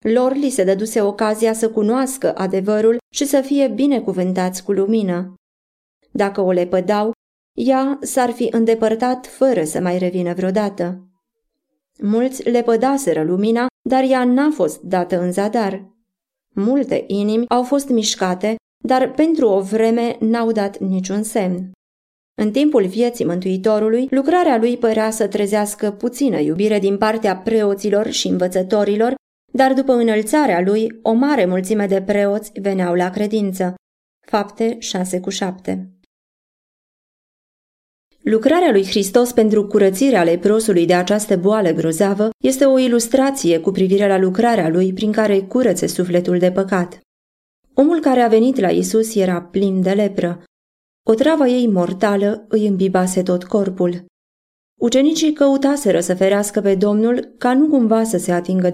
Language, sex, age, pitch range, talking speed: Romanian, female, 20-39, 190-240 Hz, 140 wpm